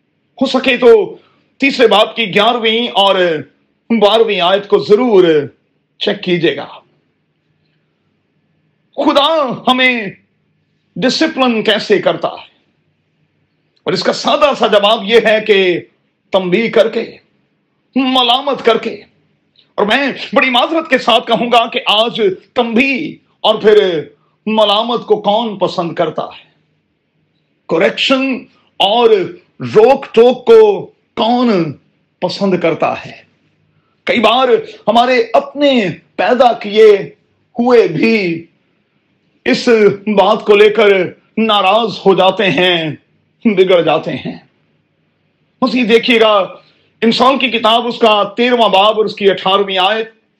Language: Urdu